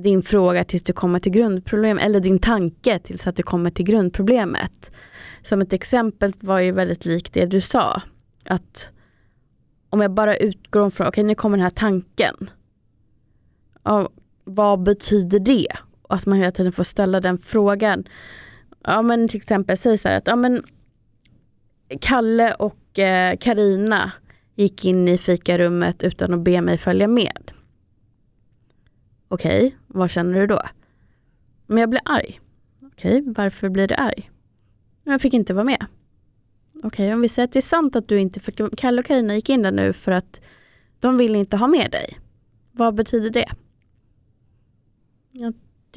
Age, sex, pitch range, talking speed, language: 20-39, female, 180-220 Hz, 165 wpm, Swedish